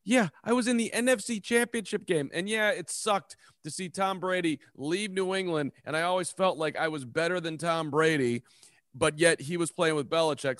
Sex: male